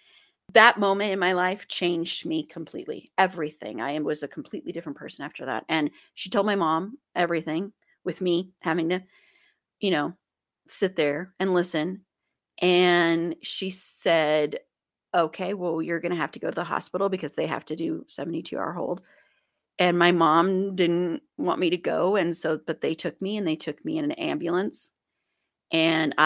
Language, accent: English, American